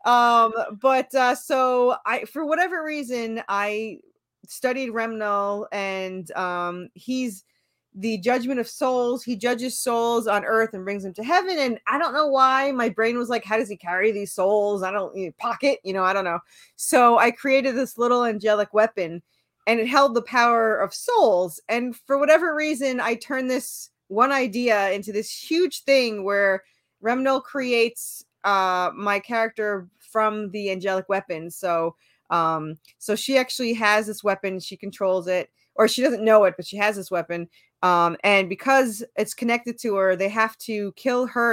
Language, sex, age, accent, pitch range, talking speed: English, female, 20-39, American, 195-245 Hz, 175 wpm